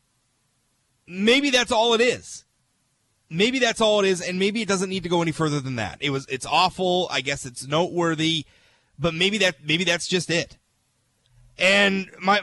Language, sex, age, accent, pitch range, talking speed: English, male, 30-49, American, 145-200 Hz, 185 wpm